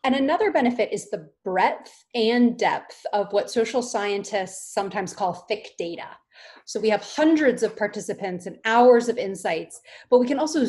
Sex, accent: female, American